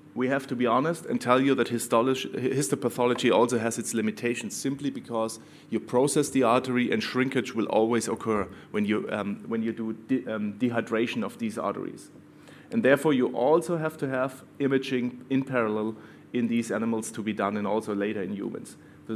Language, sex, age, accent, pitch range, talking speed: English, male, 30-49, German, 110-135 Hz, 185 wpm